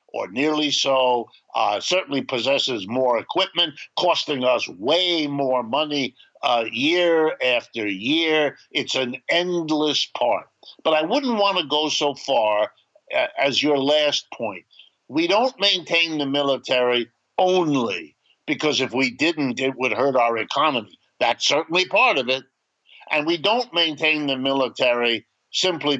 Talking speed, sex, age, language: 140 wpm, male, 50-69, English